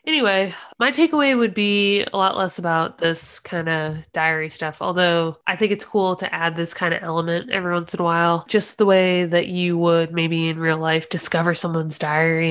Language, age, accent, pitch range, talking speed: English, 20-39, American, 160-190 Hz, 205 wpm